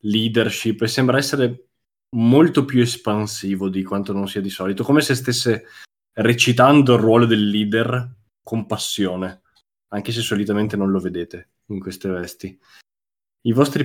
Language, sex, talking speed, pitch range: Italian, male, 145 wpm, 95-120 Hz